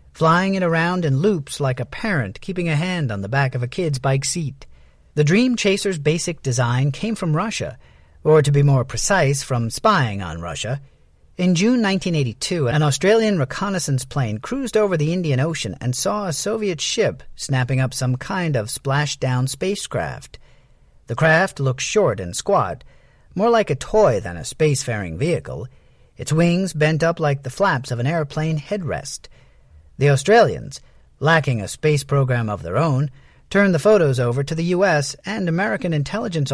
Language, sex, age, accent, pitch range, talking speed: English, male, 40-59, American, 130-180 Hz, 175 wpm